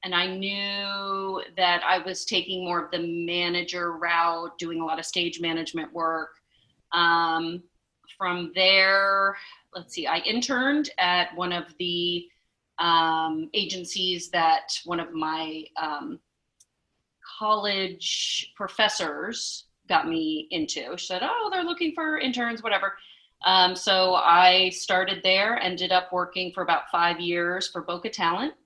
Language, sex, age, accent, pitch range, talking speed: English, female, 30-49, American, 175-205 Hz, 135 wpm